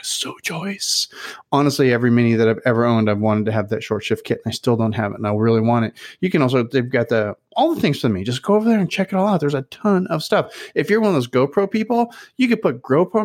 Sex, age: male, 30-49